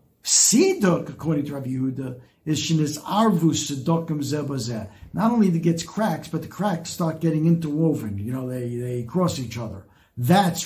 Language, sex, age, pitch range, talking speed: English, male, 60-79, 150-195 Hz, 165 wpm